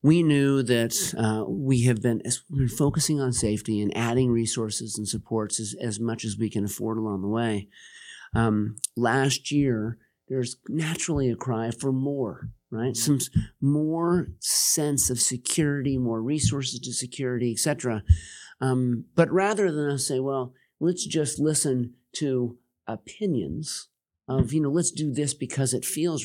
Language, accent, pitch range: English, American, 115-145 Hz